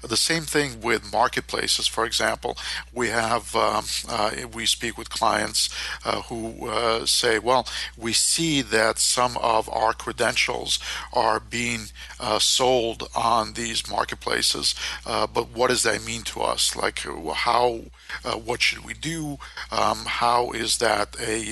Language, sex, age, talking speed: English, male, 50-69, 155 wpm